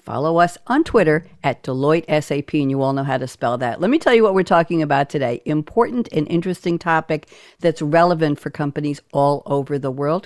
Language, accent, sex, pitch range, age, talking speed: English, American, female, 155-220 Hz, 60-79, 205 wpm